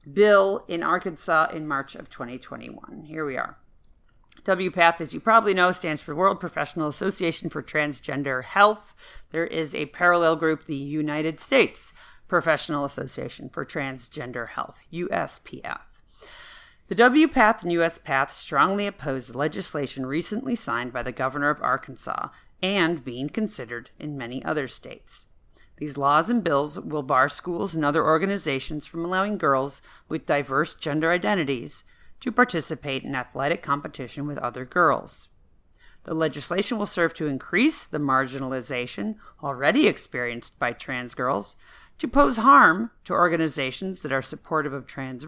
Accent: American